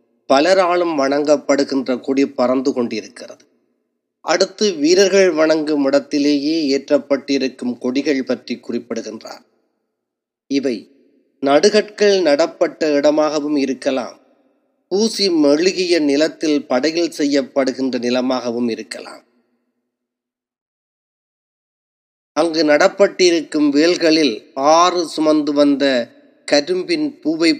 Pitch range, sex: 140-180 Hz, male